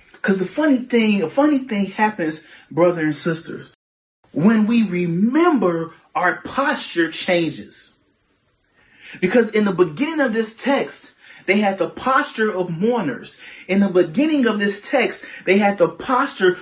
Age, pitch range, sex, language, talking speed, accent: 30-49, 185-260 Hz, male, English, 145 wpm, American